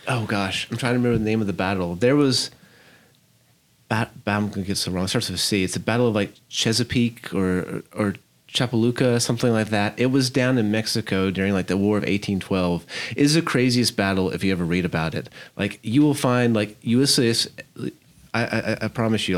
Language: English